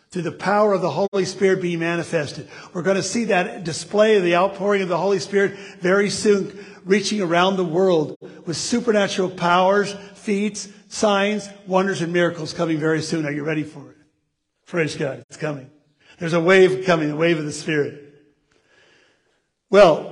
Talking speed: 175 wpm